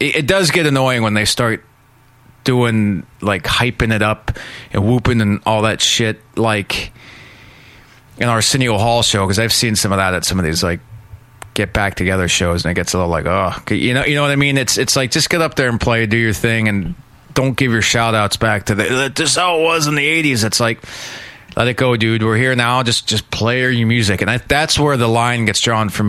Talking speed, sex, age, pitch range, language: 235 wpm, male, 30-49, 105-130 Hz, English